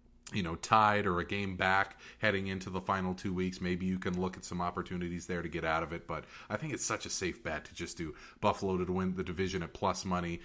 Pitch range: 85-100 Hz